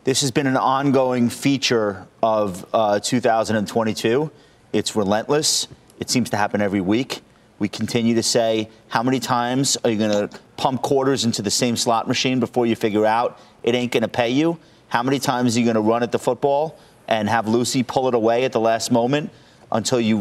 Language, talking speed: English, 200 wpm